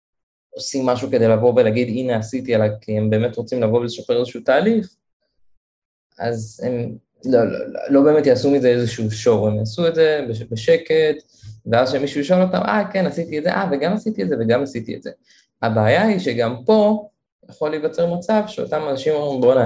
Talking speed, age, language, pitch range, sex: 185 wpm, 20-39, Hebrew, 110-140 Hz, male